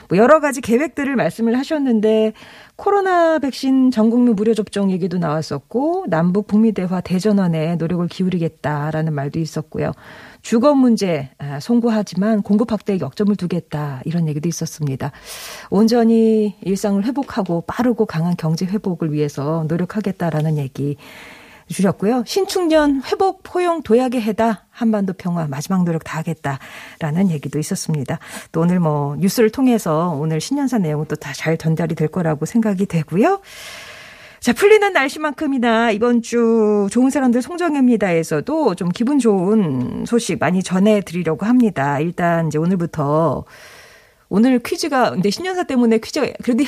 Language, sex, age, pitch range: Korean, female, 40-59, 165-240 Hz